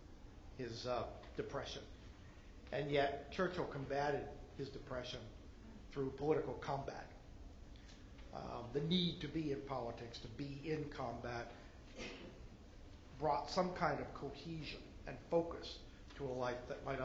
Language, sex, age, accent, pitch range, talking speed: English, male, 50-69, American, 130-185 Hz, 125 wpm